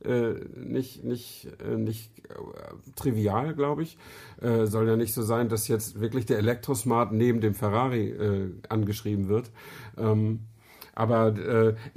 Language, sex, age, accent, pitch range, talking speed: German, male, 50-69, German, 110-135 Hz, 140 wpm